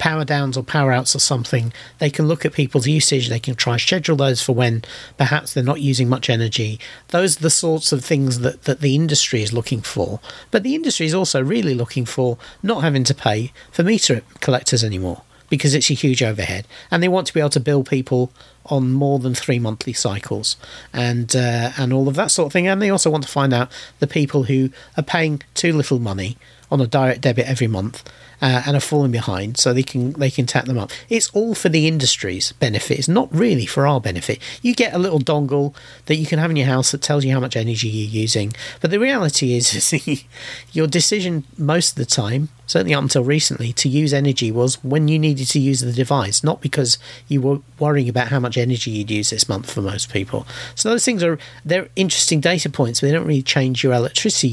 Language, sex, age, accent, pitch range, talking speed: English, male, 40-59, British, 120-150 Hz, 230 wpm